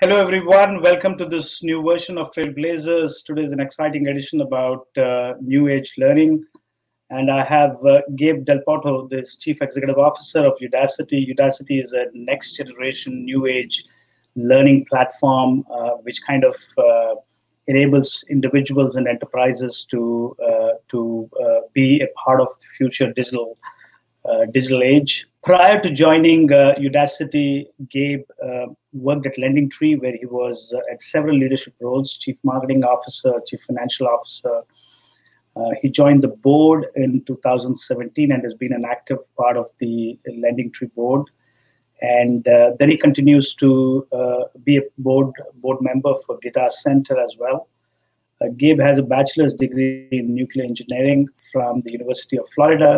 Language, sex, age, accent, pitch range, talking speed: English, male, 30-49, Indian, 125-145 Hz, 155 wpm